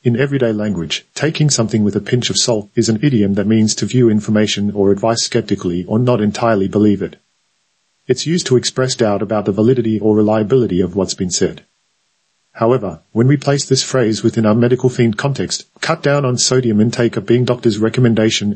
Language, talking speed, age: English, 195 wpm, 40-59